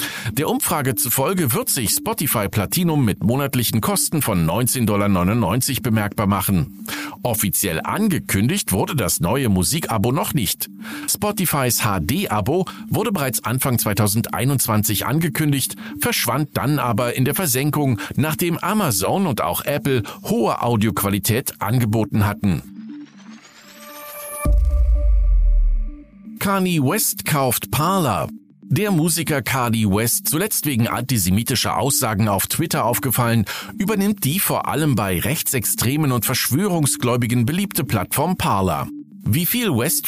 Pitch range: 110-155 Hz